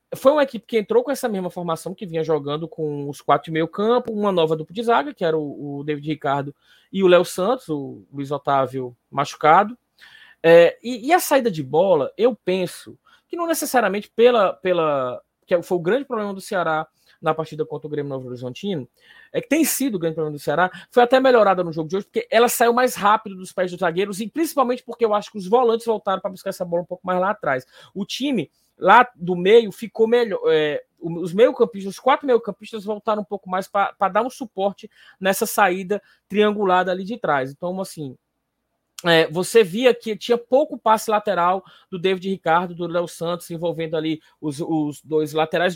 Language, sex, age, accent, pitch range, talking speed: Portuguese, male, 20-39, Brazilian, 170-230 Hz, 205 wpm